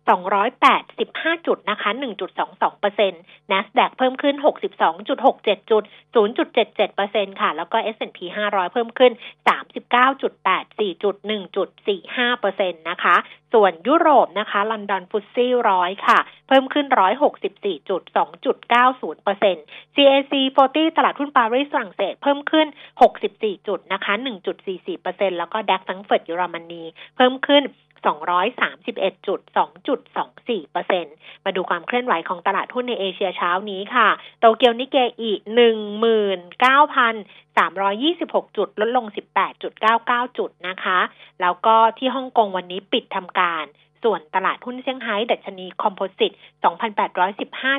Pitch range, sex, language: 195-260 Hz, female, Thai